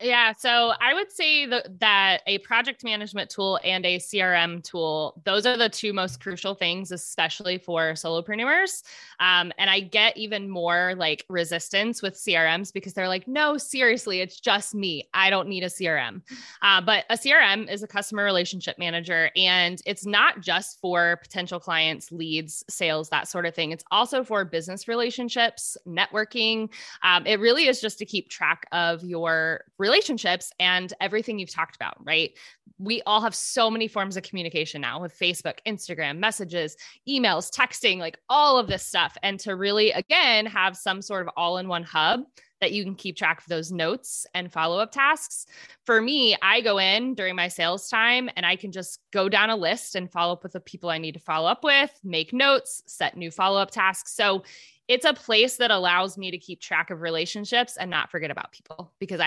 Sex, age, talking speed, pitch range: female, 20-39, 190 wpm, 175-230 Hz